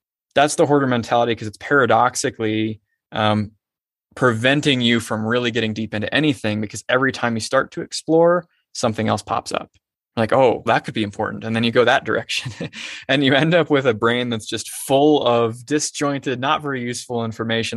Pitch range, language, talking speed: 110-130 Hz, English, 185 wpm